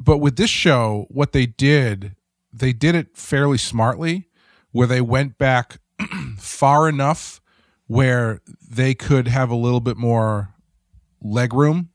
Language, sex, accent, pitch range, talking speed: English, male, American, 105-145 Hz, 135 wpm